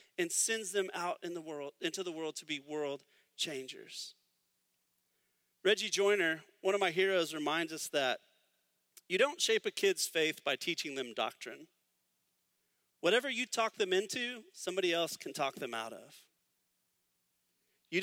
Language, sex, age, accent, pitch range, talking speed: English, male, 40-59, American, 140-215 Hz, 155 wpm